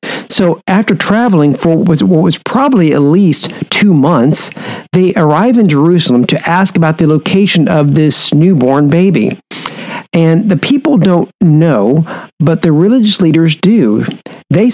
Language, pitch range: English, 150-190 Hz